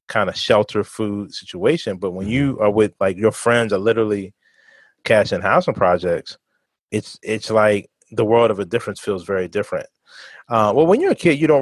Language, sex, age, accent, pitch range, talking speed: English, male, 30-49, American, 100-115 Hz, 195 wpm